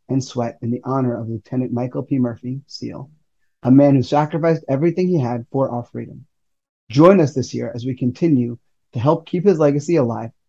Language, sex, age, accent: English, male, 30-49, American